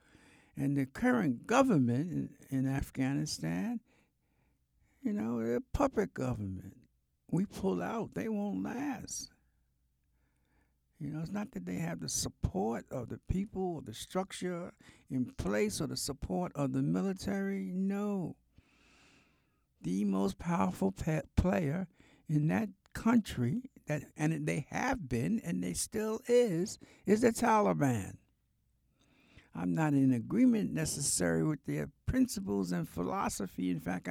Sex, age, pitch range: male, 60-79, 100-170 Hz